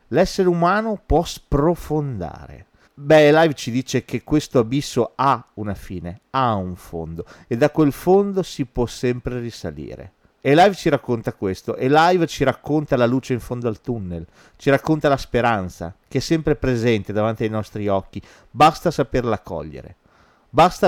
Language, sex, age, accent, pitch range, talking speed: Italian, male, 40-59, native, 110-145 Hz, 160 wpm